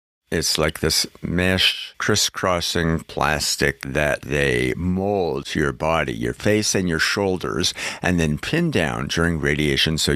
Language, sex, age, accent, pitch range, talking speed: English, male, 60-79, American, 75-95 Hz, 140 wpm